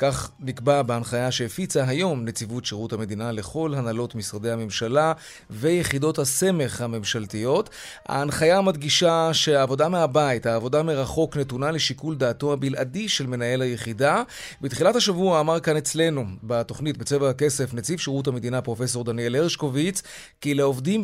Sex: male